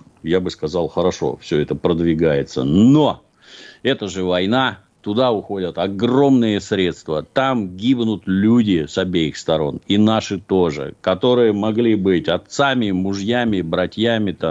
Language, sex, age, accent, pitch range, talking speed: Russian, male, 50-69, native, 90-115 Hz, 125 wpm